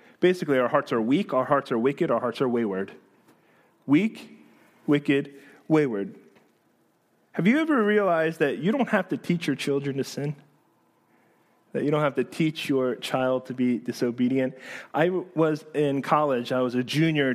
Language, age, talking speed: English, 30-49, 170 wpm